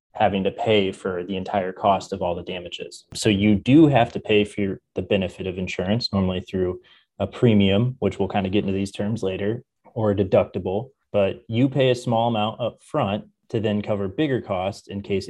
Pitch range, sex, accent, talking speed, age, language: 95-110 Hz, male, American, 210 wpm, 20-39, English